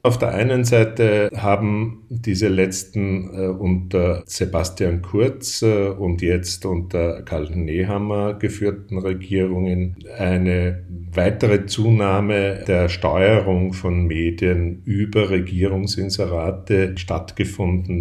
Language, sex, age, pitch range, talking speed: German, male, 50-69, 85-100 Hz, 90 wpm